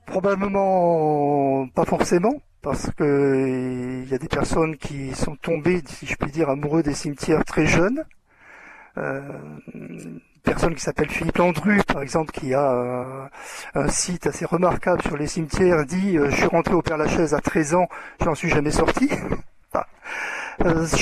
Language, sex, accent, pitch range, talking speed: French, male, French, 145-180 Hz, 165 wpm